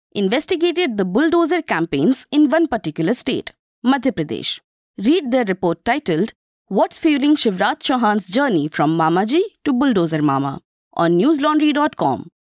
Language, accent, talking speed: English, Indian, 130 wpm